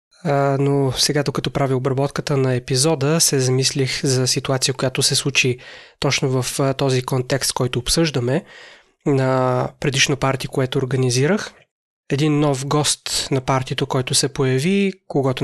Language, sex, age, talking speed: Bulgarian, male, 20-39, 130 wpm